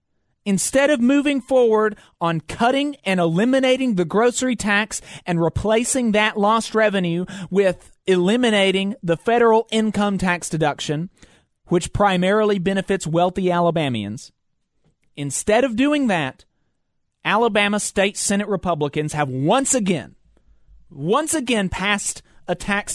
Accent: American